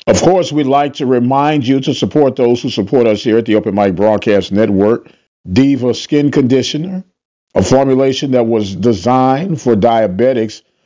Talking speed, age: 165 wpm, 50-69